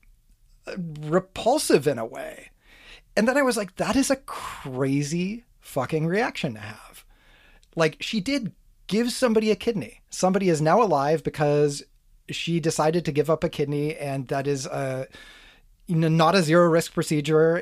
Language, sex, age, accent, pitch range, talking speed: English, male, 30-49, American, 145-195 Hz, 155 wpm